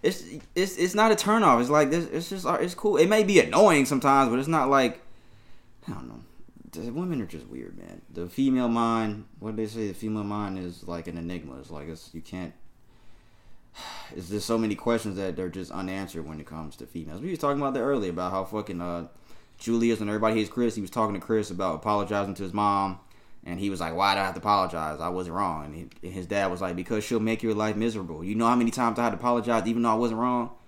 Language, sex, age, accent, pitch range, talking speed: English, male, 20-39, American, 95-125 Hz, 250 wpm